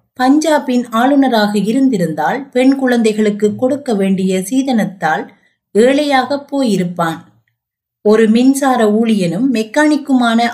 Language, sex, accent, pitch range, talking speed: Tamil, female, native, 195-260 Hz, 80 wpm